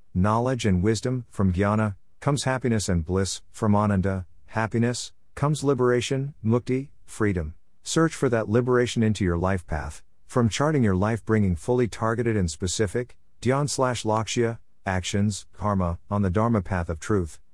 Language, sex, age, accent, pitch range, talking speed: English, male, 50-69, American, 90-115 Hz, 150 wpm